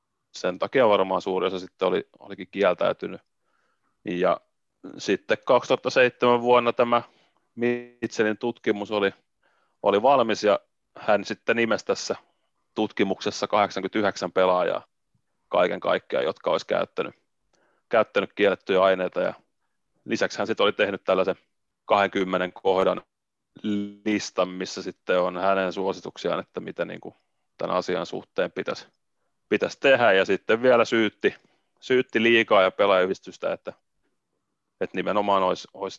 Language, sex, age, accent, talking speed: Finnish, male, 30-49, native, 120 wpm